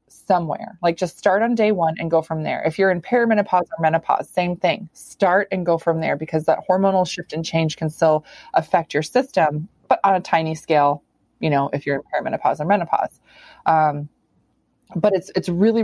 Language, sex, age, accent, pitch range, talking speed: English, female, 20-39, American, 160-195 Hz, 200 wpm